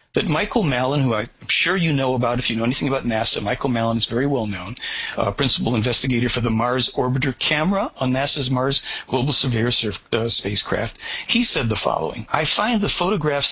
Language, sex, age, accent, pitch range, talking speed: English, male, 60-79, American, 120-160 Hz, 180 wpm